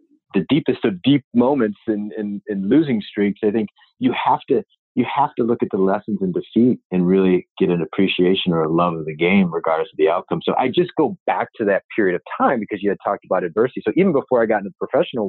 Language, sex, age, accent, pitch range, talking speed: English, male, 30-49, American, 90-140 Hz, 245 wpm